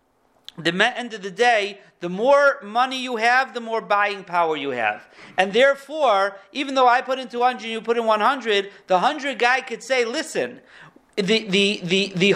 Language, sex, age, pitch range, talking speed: English, male, 40-59, 200-265 Hz, 195 wpm